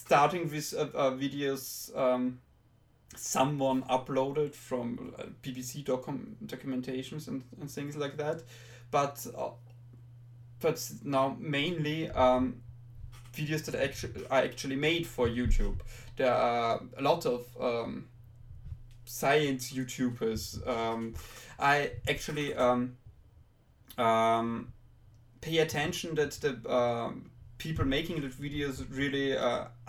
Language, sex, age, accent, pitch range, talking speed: English, male, 20-39, German, 120-135 Hz, 105 wpm